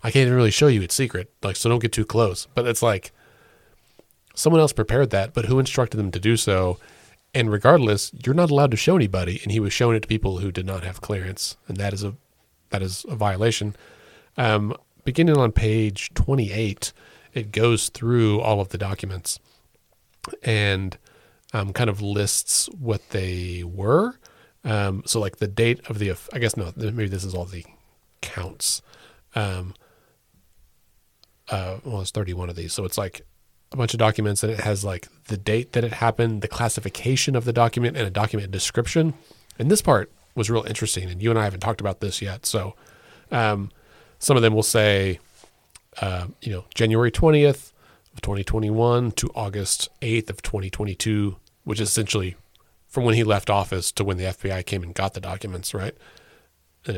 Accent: American